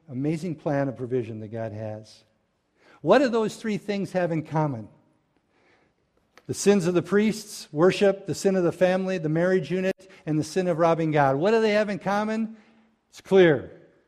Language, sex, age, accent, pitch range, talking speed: English, male, 50-69, American, 135-180 Hz, 185 wpm